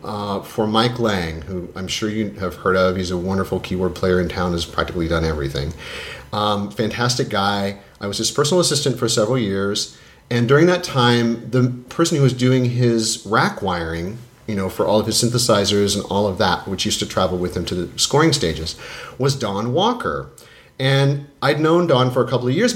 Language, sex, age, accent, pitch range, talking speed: English, male, 40-59, American, 100-140 Hz, 205 wpm